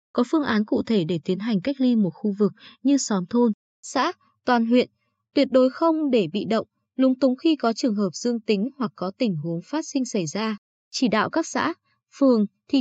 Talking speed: 220 wpm